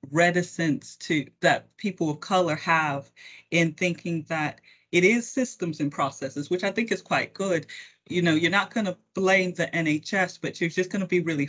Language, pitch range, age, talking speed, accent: English, 145-180 Hz, 30-49, 195 wpm, American